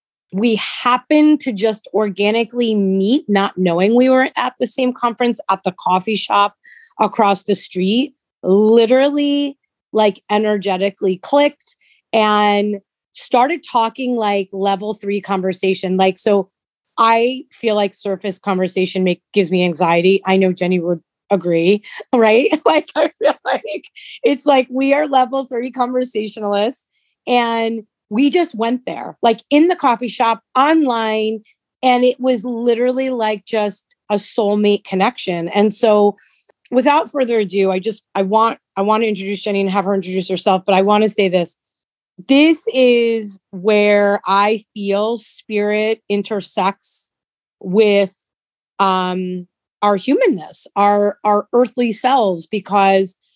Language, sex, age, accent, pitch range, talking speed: English, female, 30-49, American, 195-250 Hz, 135 wpm